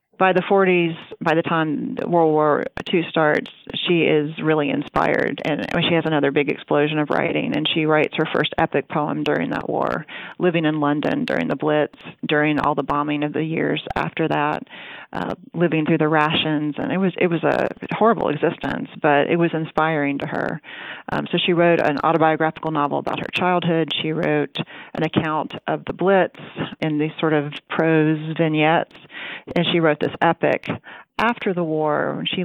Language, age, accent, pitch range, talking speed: English, 40-59, American, 155-185 Hz, 180 wpm